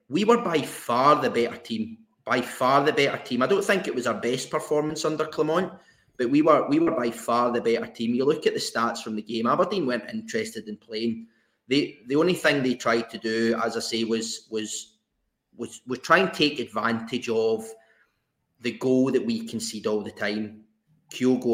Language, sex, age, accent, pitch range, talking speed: English, male, 30-49, British, 110-150 Hz, 205 wpm